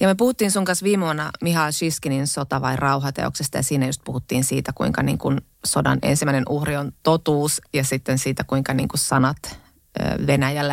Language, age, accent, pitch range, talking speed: Finnish, 20-39, native, 140-175 Hz, 185 wpm